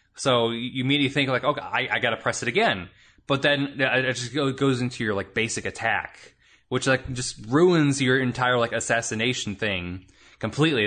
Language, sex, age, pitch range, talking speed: English, male, 20-39, 110-145 Hz, 180 wpm